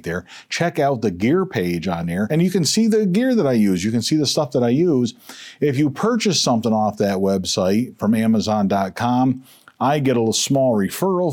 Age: 40-59